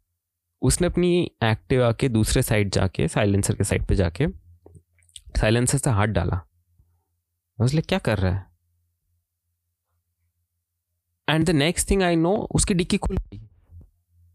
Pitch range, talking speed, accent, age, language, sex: 90-145 Hz, 125 wpm, native, 20-39, Hindi, male